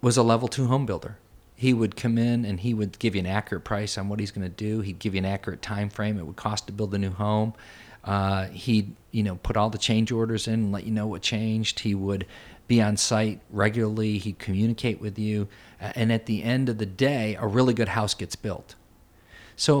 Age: 40-59